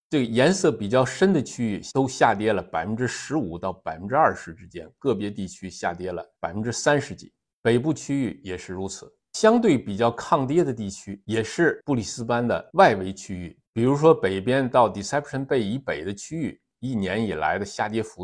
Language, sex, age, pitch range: Chinese, male, 60-79, 100-130 Hz